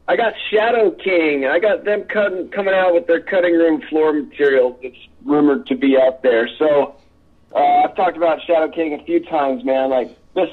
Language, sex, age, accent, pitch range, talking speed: English, male, 40-59, American, 130-190 Hz, 205 wpm